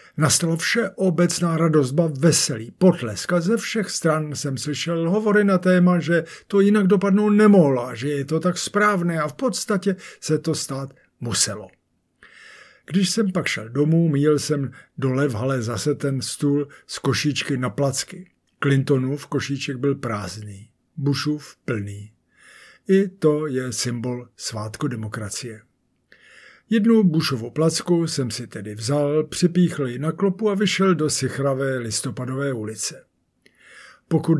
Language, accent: Czech, native